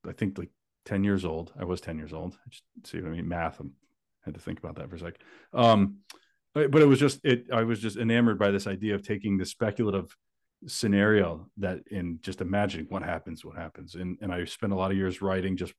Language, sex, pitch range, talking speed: English, male, 90-105 Hz, 240 wpm